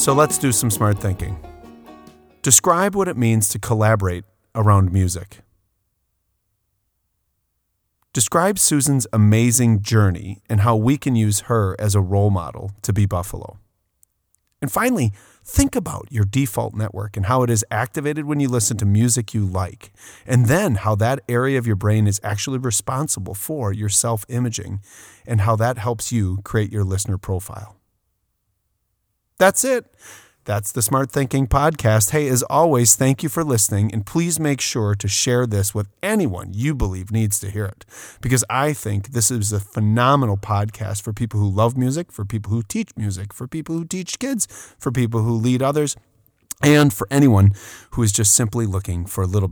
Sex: male